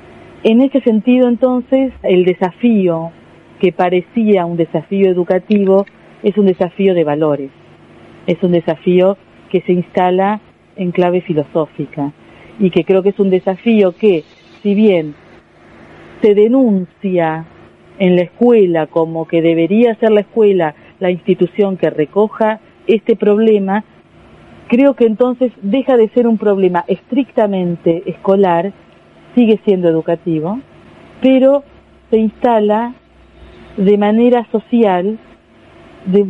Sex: female